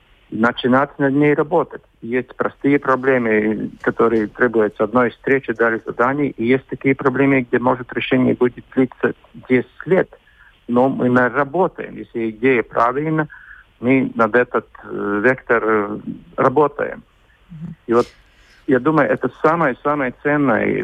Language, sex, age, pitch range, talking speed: Russian, male, 50-69, 115-145 Hz, 120 wpm